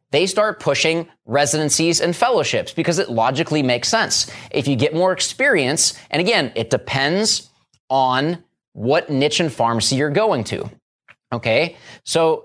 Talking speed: 145 wpm